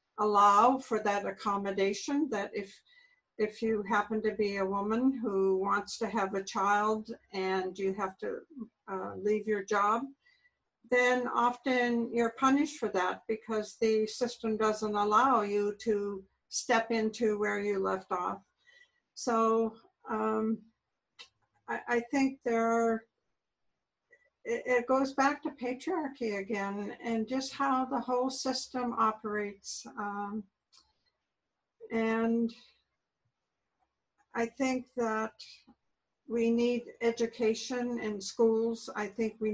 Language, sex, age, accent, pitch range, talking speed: English, female, 60-79, American, 210-250 Hz, 120 wpm